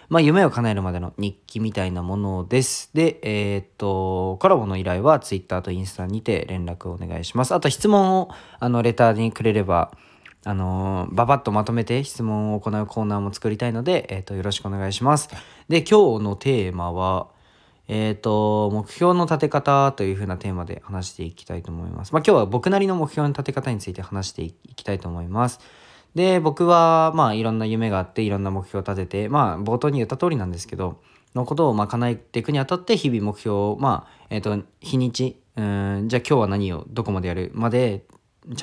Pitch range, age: 95-135 Hz, 20-39